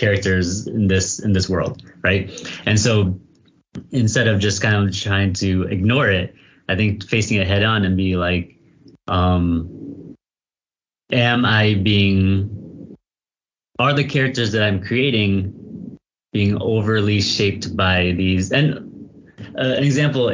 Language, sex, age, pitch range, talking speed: English, male, 30-49, 95-120 Hz, 135 wpm